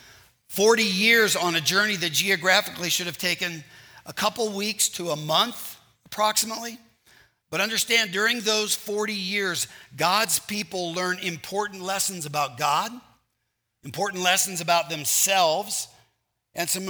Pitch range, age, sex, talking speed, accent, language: 160-205 Hz, 50-69, male, 130 wpm, American, English